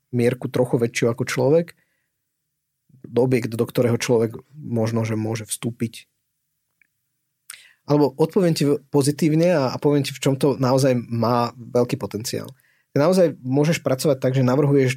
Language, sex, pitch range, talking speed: Slovak, male, 125-150 Hz, 135 wpm